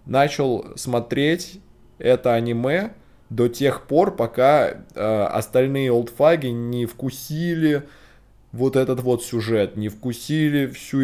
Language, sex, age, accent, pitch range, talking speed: Russian, male, 20-39, native, 105-130 Hz, 110 wpm